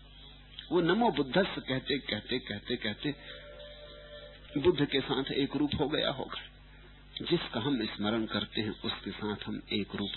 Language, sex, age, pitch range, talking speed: English, male, 50-69, 110-165 Hz, 155 wpm